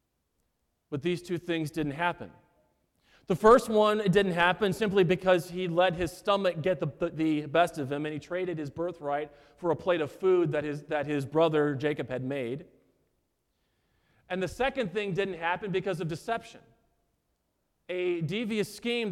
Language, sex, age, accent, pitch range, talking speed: English, male, 40-59, American, 155-205 Hz, 175 wpm